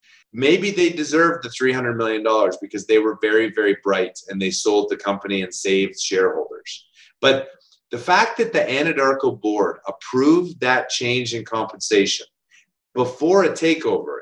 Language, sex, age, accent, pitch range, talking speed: English, male, 30-49, American, 110-160 Hz, 150 wpm